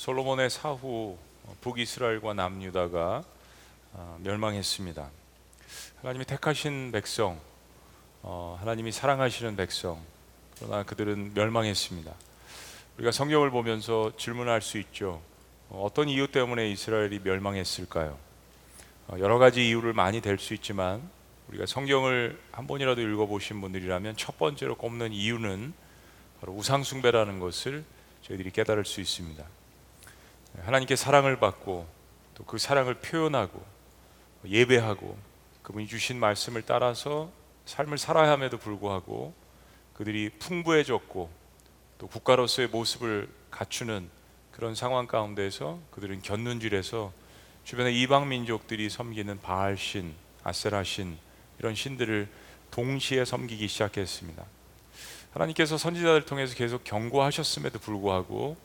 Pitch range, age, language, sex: 95-125 Hz, 40-59, Korean, male